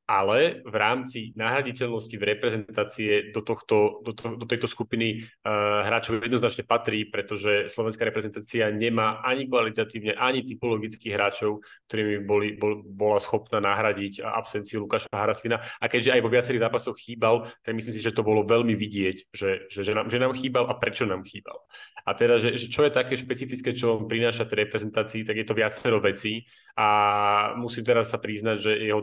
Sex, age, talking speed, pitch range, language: male, 30-49, 180 wpm, 105-120 Hz, Slovak